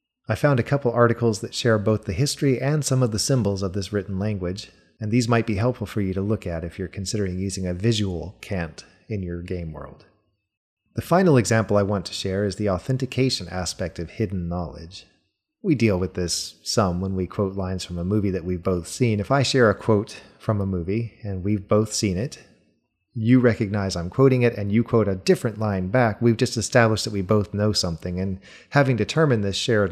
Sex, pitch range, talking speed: male, 95-115 Hz, 215 wpm